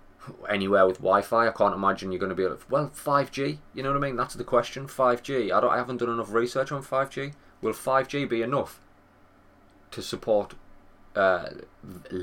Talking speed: 190 wpm